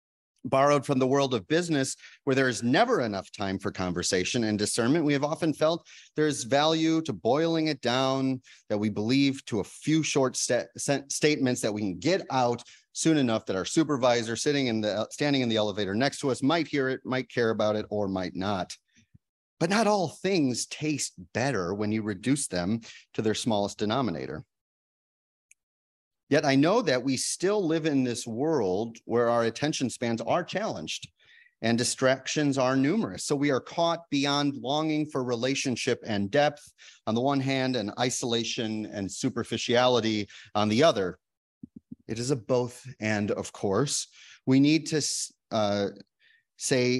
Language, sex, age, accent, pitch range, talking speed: English, male, 30-49, American, 110-145 Hz, 165 wpm